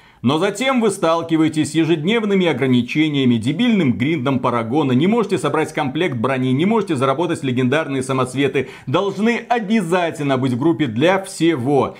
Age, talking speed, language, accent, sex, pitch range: 30-49, 135 wpm, Russian, native, male, 130-190 Hz